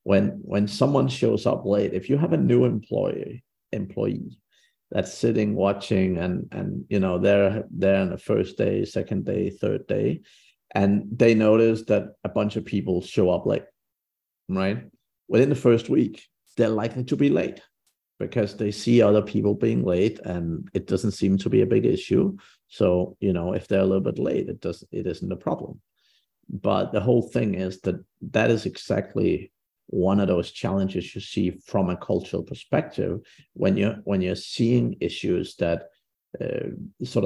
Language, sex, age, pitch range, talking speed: English, male, 50-69, 95-110 Hz, 175 wpm